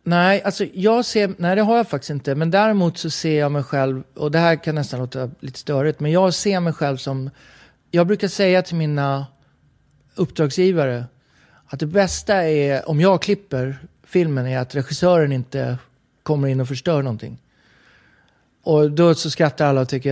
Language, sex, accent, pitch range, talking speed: English, male, Swedish, 135-175 Hz, 180 wpm